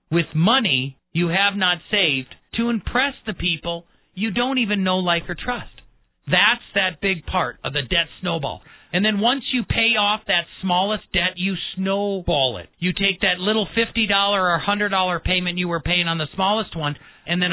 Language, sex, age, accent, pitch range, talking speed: English, male, 40-59, American, 155-195 Hz, 185 wpm